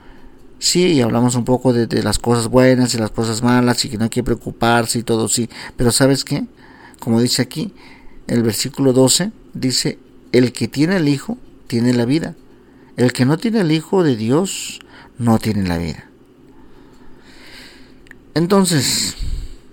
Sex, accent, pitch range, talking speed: male, Mexican, 115-130 Hz, 165 wpm